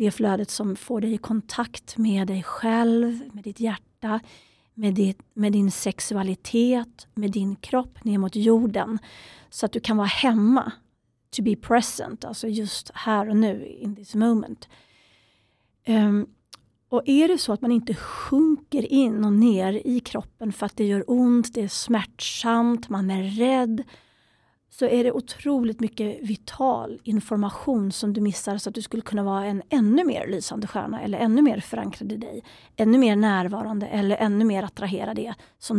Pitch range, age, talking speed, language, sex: 205-240 Hz, 40-59, 165 wpm, Swedish, female